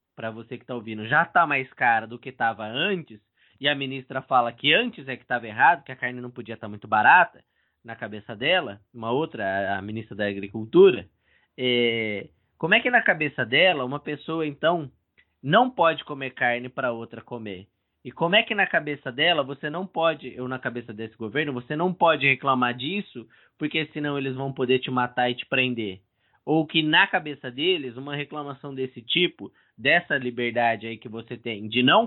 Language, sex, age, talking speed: Portuguese, male, 20-39, 195 wpm